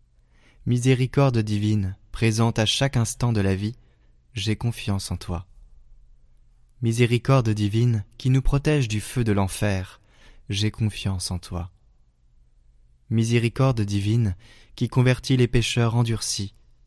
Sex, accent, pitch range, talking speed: male, French, 95-120 Hz, 115 wpm